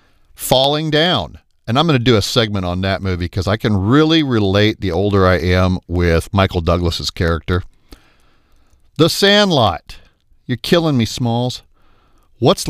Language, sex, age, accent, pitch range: Japanese, male, 50-69, American, 85-125 Hz